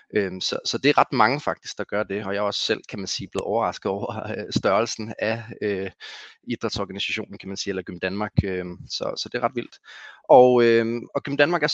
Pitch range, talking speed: 100-120 Hz, 200 wpm